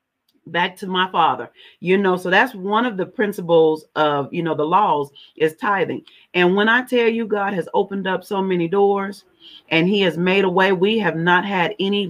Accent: American